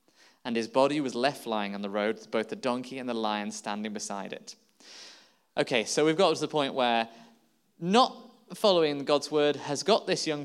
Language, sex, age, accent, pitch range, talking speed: English, male, 20-39, British, 115-180 Hz, 195 wpm